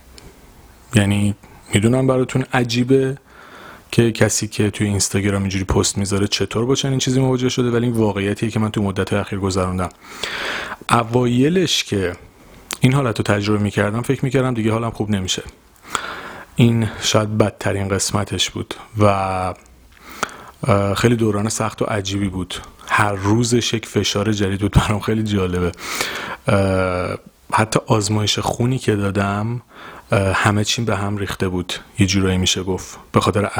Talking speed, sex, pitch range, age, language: 140 wpm, male, 100-115 Hz, 30-49, Persian